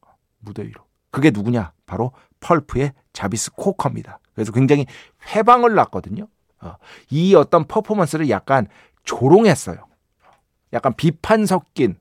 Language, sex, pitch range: Korean, male, 120-180 Hz